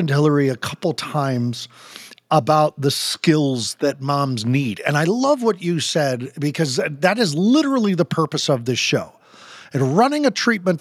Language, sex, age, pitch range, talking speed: English, male, 50-69, 130-185 Hz, 160 wpm